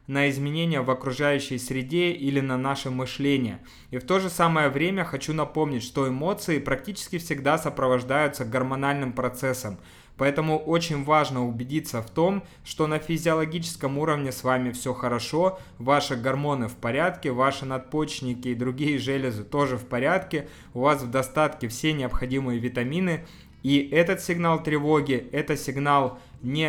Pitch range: 130-155 Hz